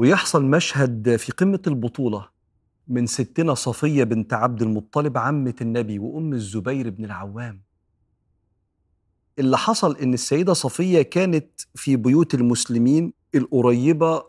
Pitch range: 120-160 Hz